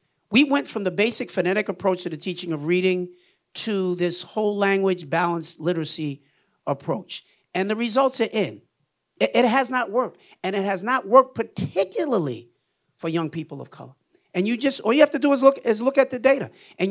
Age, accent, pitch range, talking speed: 50-69, American, 165-225 Hz, 200 wpm